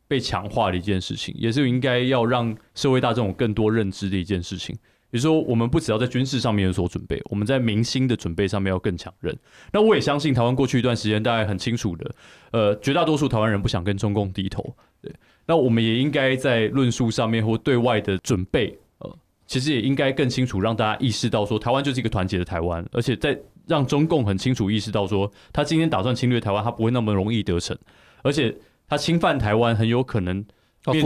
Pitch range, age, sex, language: 100-130 Hz, 20-39, male, Chinese